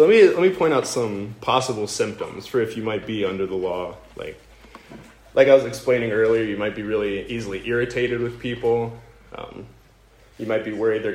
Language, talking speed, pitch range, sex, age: English, 195 wpm, 105-135 Hz, male, 20-39